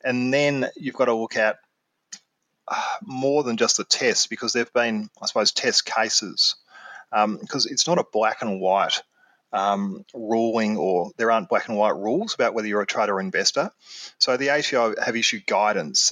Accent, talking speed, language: Australian, 190 wpm, English